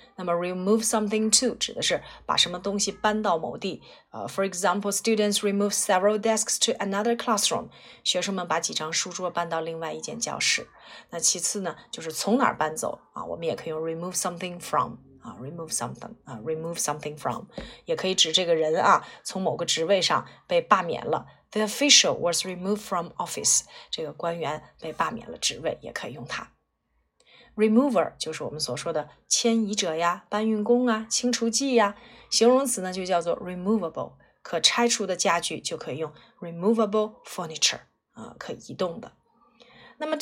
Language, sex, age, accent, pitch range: Chinese, female, 30-49, native, 165-225 Hz